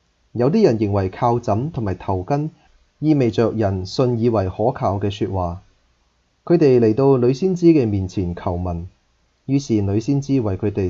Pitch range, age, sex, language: 90-120 Hz, 20-39, male, Chinese